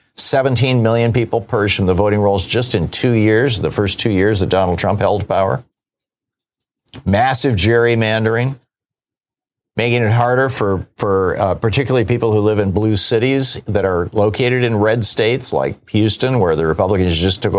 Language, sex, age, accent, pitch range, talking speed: English, male, 50-69, American, 100-120 Hz, 165 wpm